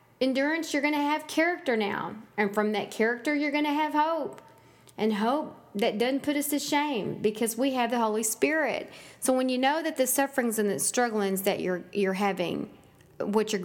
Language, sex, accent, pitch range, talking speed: English, female, American, 210-285 Hz, 200 wpm